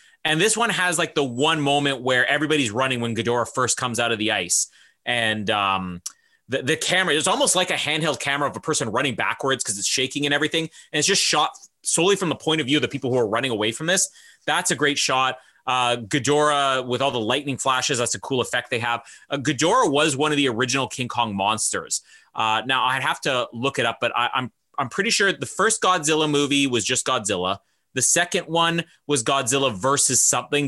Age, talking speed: 30-49, 225 wpm